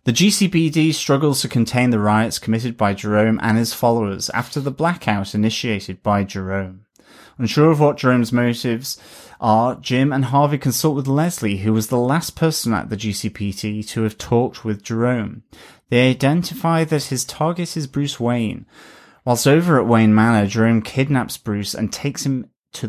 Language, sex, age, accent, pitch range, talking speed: English, male, 30-49, British, 110-140 Hz, 170 wpm